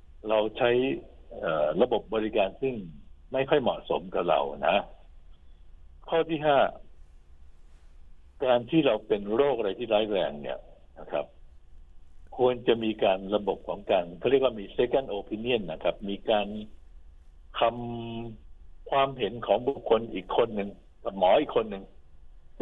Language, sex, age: Thai, male, 60-79